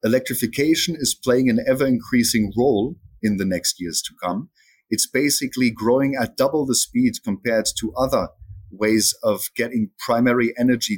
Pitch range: 105-130 Hz